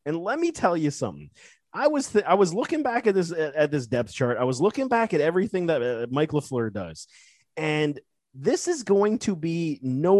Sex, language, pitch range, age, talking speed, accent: male, English, 135-210 Hz, 30-49, 220 wpm, American